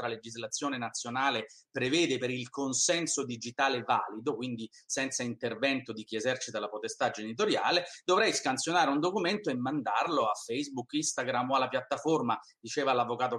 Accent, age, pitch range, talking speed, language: native, 30-49, 130-185 Hz, 140 wpm, Italian